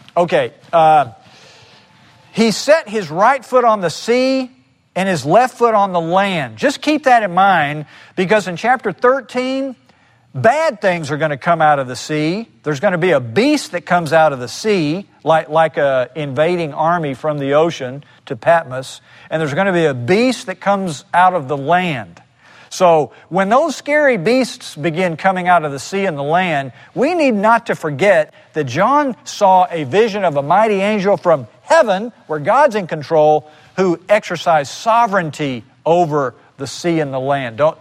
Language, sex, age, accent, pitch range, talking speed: English, male, 40-59, American, 150-215 Hz, 185 wpm